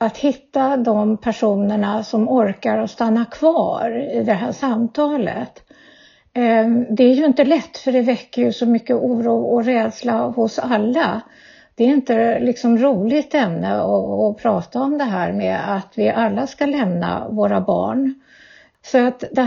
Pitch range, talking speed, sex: 220-260 Hz, 155 wpm, female